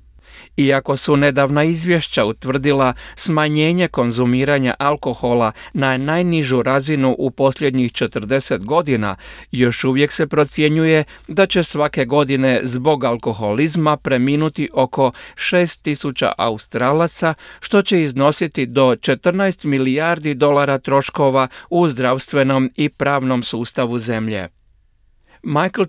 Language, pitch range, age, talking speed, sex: Croatian, 125-150 Hz, 40-59, 100 wpm, male